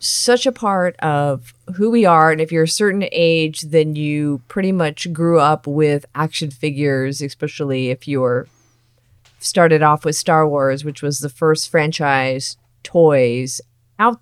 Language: English